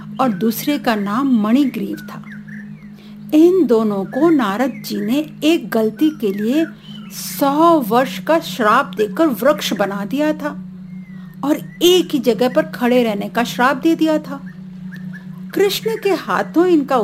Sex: female